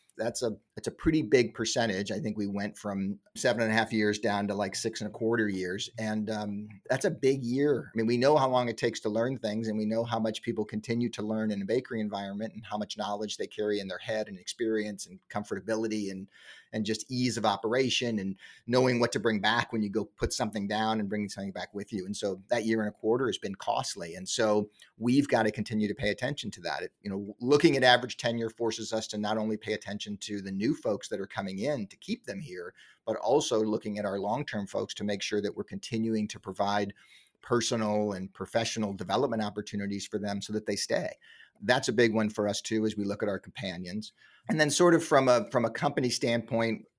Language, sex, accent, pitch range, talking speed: English, male, American, 105-115 Hz, 240 wpm